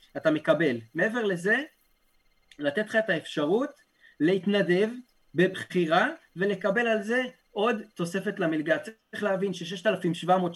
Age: 30-49